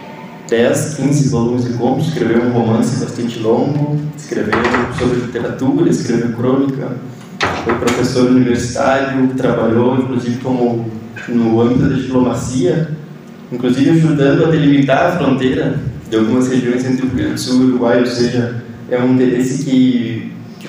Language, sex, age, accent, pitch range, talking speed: Portuguese, male, 20-39, Brazilian, 120-135 Hz, 140 wpm